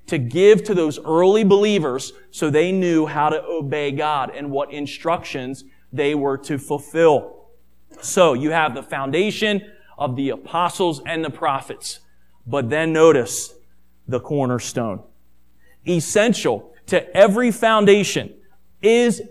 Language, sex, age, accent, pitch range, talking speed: English, male, 30-49, American, 155-225 Hz, 125 wpm